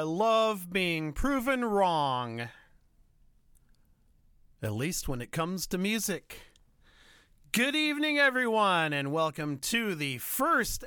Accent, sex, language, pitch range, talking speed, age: American, male, English, 130-185 Hz, 110 wpm, 40-59